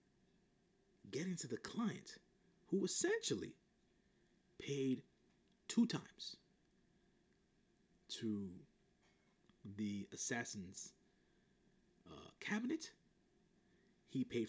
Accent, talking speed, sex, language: American, 65 wpm, male, English